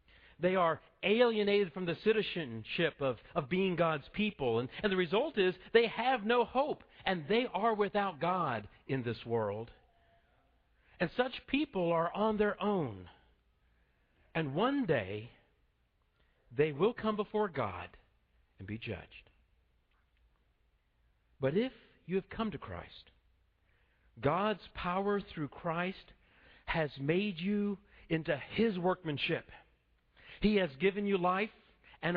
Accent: American